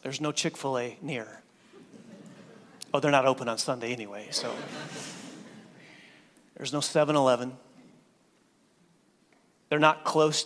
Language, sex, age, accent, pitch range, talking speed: English, male, 30-49, American, 135-165 Hz, 105 wpm